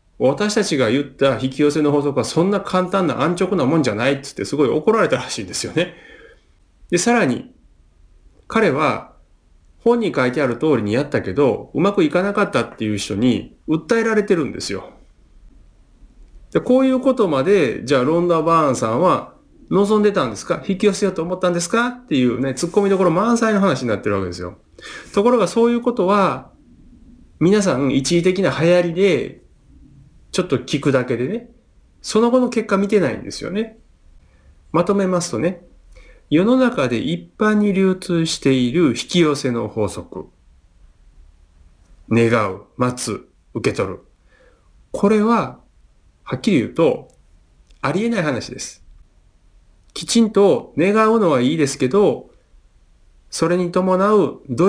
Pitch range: 125-210 Hz